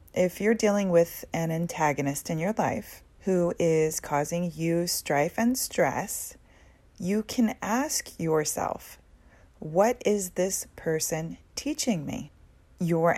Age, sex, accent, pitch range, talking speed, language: 30-49, female, American, 150-185 Hz, 125 wpm, English